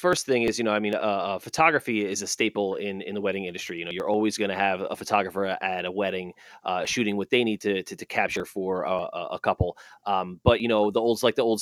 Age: 30-49